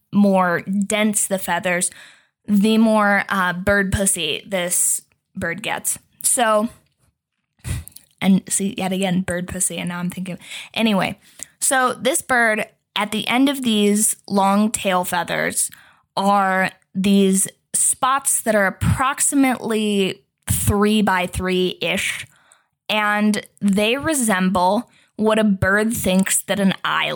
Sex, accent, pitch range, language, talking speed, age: female, American, 185-215 Hz, English, 120 wpm, 20-39